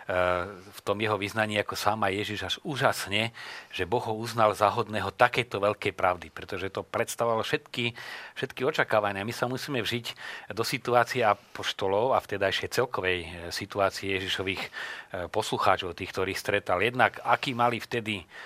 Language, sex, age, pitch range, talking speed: Slovak, male, 40-59, 100-115 Hz, 155 wpm